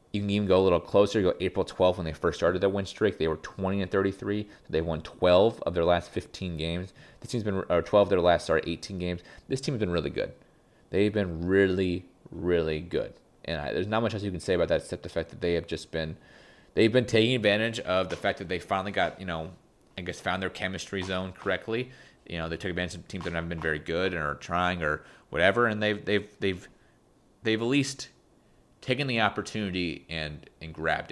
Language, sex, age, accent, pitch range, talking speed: English, male, 30-49, American, 85-105 Hz, 235 wpm